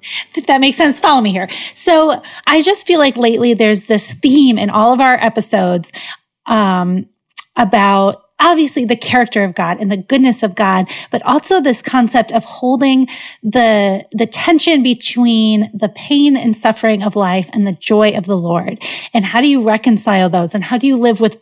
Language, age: English, 30-49